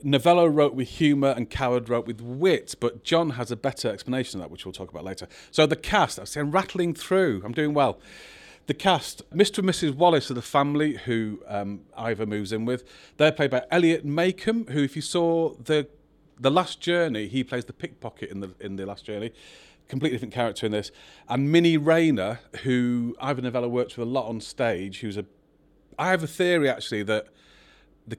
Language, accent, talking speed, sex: English, British, 200 wpm, male